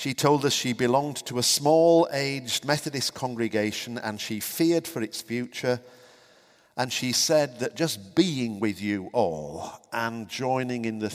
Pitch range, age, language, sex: 110-145 Hz, 50-69, English, male